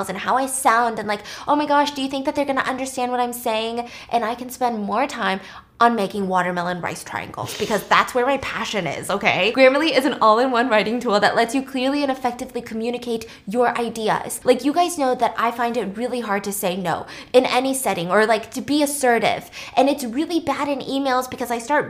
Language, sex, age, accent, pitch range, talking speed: English, female, 20-39, American, 220-275 Hz, 225 wpm